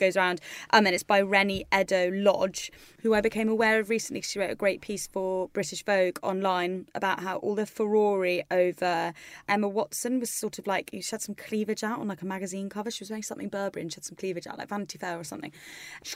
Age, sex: 20-39, female